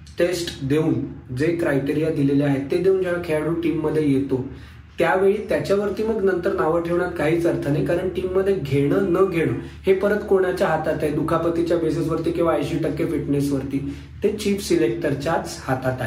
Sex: male